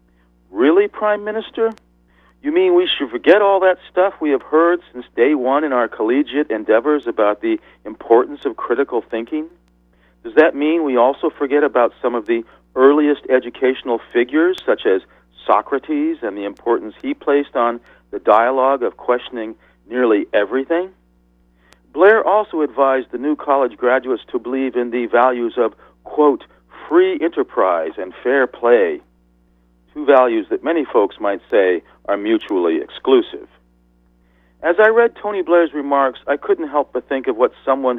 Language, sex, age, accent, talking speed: English, male, 40-59, American, 155 wpm